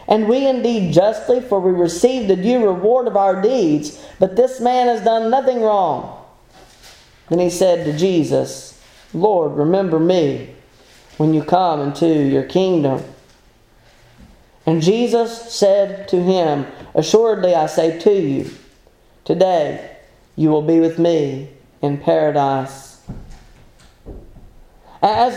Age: 40-59